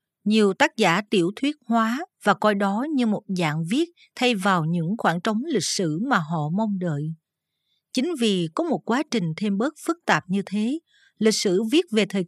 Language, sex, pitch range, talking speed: Vietnamese, female, 185-245 Hz, 200 wpm